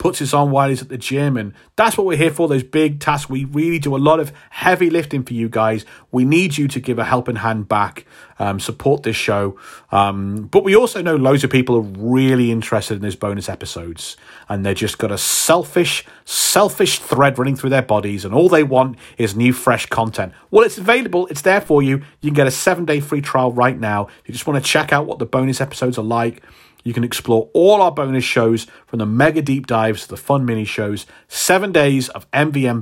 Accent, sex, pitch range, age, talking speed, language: British, male, 115-160 Hz, 30-49, 230 wpm, English